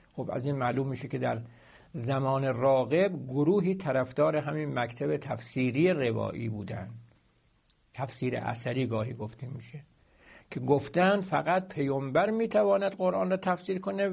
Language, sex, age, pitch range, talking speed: Persian, male, 60-79, 125-175 Hz, 125 wpm